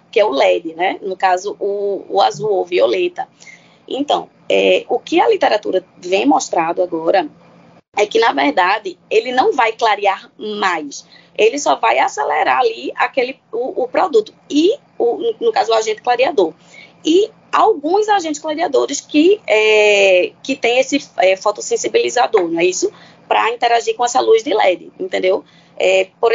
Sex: female